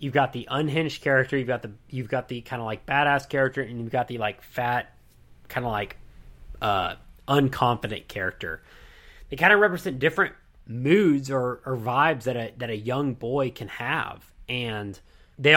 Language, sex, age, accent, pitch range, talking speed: English, male, 30-49, American, 120-145 Hz, 180 wpm